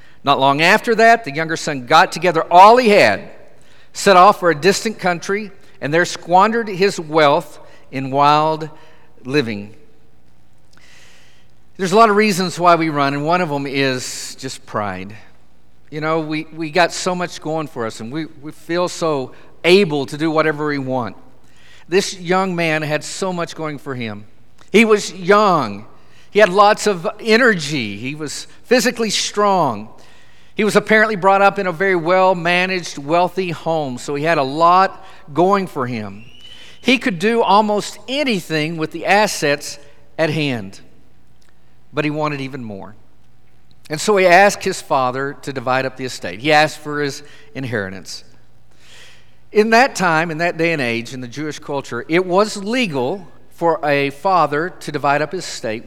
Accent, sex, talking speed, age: American, male, 170 wpm, 50-69